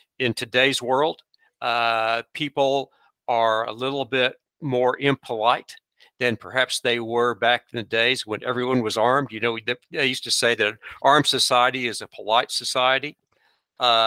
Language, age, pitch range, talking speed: English, 50-69, 115-135 Hz, 160 wpm